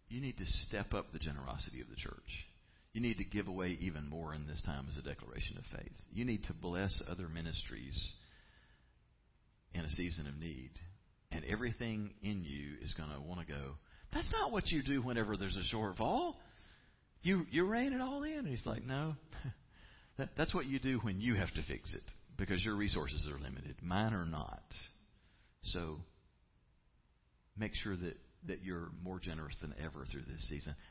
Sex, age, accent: male, 50-69, American